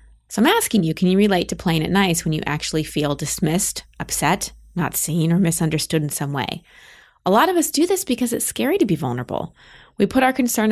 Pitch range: 160-220 Hz